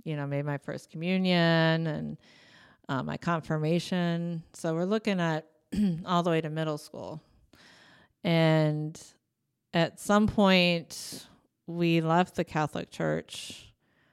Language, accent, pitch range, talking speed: English, American, 155-180 Hz, 125 wpm